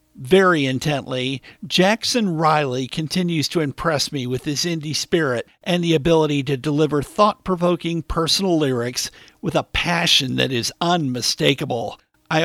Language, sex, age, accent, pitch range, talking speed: English, male, 50-69, American, 145-175 Hz, 130 wpm